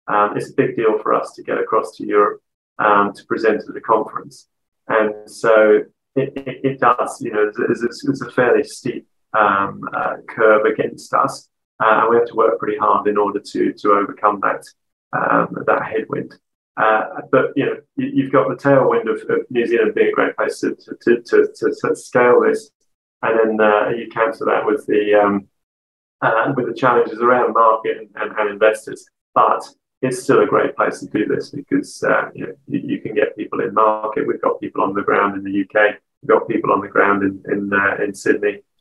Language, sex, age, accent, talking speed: English, male, 30-49, British, 215 wpm